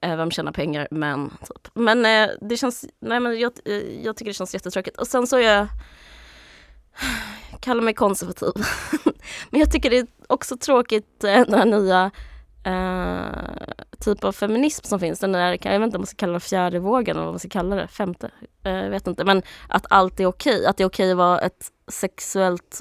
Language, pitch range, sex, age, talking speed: Swedish, 170-220 Hz, female, 20-39, 195 wpm